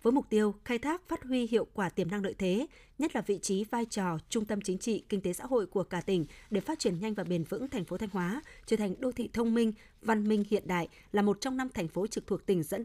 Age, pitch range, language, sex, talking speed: 20-39, 190-235 Hz, Vietnamese, female, 285 wpm